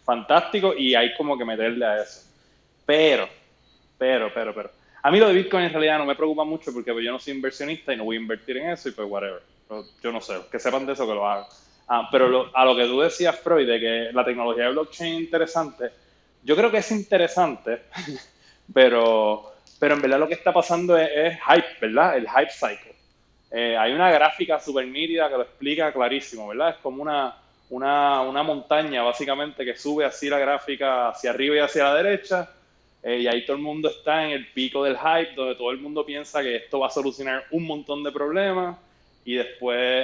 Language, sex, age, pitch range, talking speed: Spanish, male, 20-39, 125-160 Hz, 215 wpm